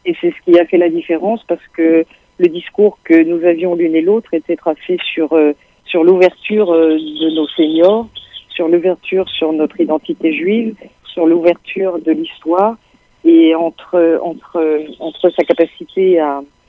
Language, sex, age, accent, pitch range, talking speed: French, female, 40-59, French, 160-190 Hz, 155 wpm